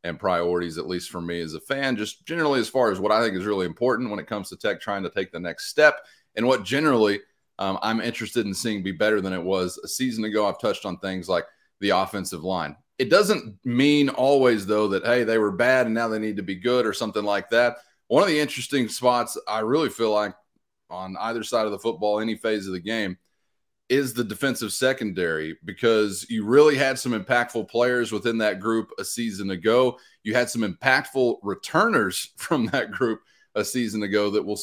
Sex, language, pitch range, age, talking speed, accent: male, English, 100-125 Hz, 30-49, 220 wpm, American